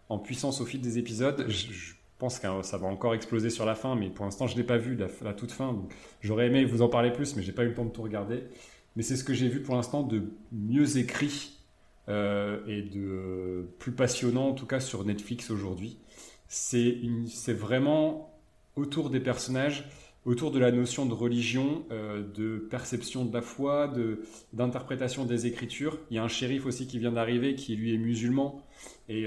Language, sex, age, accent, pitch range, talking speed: French, male, 30-49, French, 110-140 Hz, 215 wpm